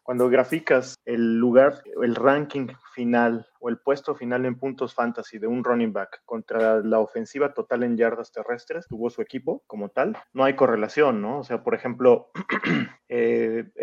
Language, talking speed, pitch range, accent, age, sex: Spanish, 170 wpm, 115-135 Hz, Mexican, 30-49, male